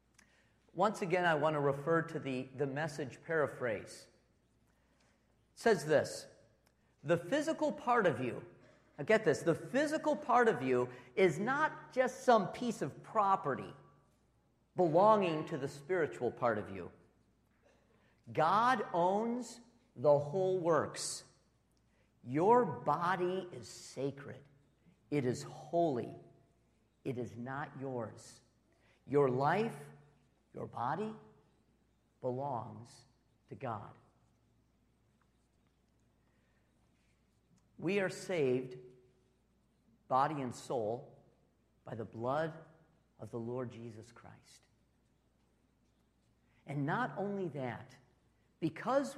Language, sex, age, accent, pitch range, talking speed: English, male, 50-69, American, 125-195 Hz, 100 wpm